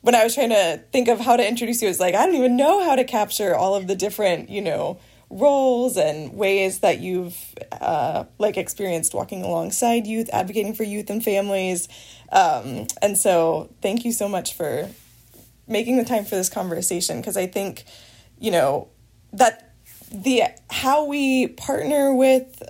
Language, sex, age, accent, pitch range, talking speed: English, female, 20-39, American, 190-245 Hz, 180 wpm